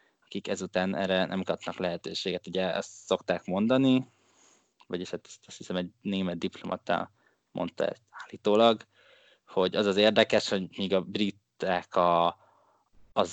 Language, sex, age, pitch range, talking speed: Hungarian, male, 20-39, 95-105 Hz, 130 wpm